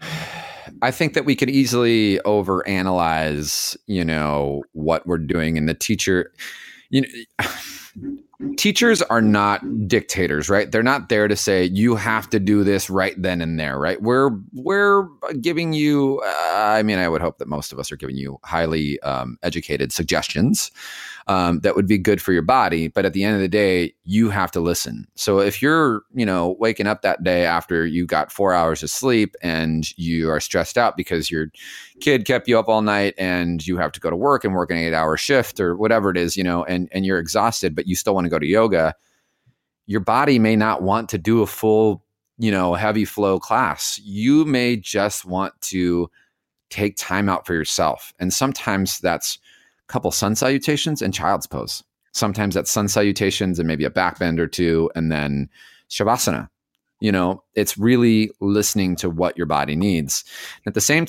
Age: 30-49